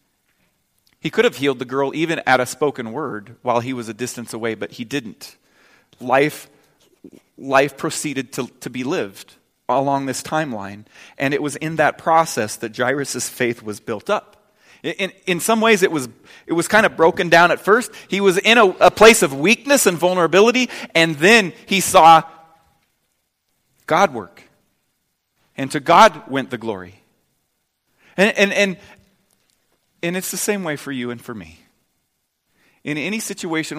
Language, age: English, 40-59